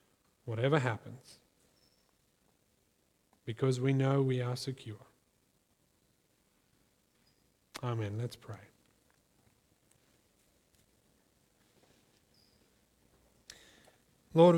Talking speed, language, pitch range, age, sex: 50 wpm, English, 120-150 Hz, 40-59, male